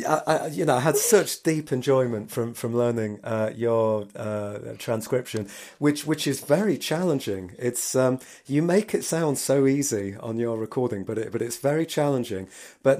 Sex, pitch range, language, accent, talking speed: male, 115-150 Hz, English, British, 175 wpm